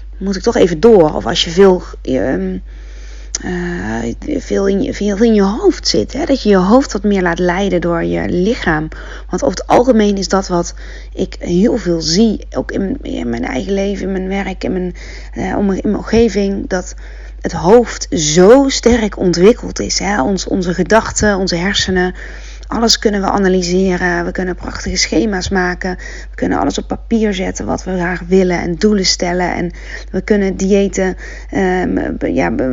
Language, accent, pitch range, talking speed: Dutch, Dutch, 175-205 Hz, 165 wpm